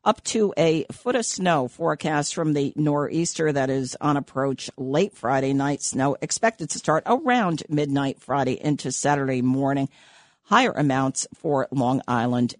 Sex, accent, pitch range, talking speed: female, American, 140-210 Hz, 150 wpm